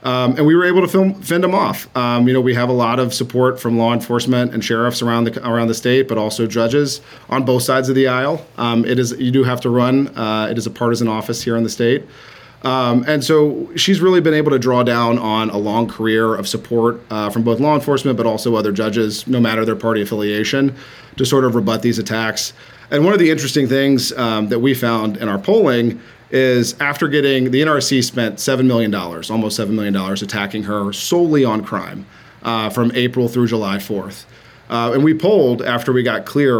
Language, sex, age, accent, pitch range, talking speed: English, male, 40-59, American, 110-130 Hz, 220 wpm